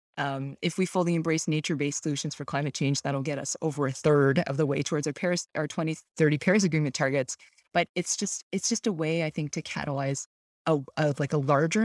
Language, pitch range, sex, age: English, 145-170 Hz, female, 20-39